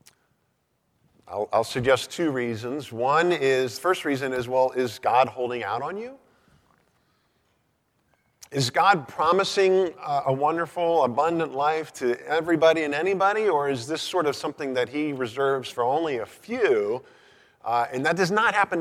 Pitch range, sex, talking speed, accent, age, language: 120-170 Hz, male, 155 wpm, American, 50-69, English